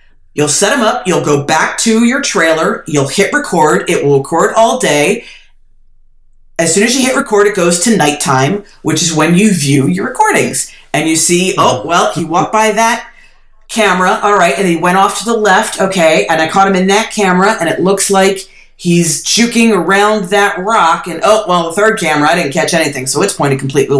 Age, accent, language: 40-59, American, English